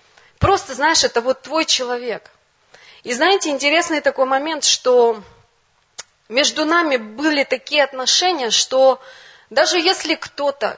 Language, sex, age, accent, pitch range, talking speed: Russian, female, 20-39, native, 230-295 Hz, 115 wpm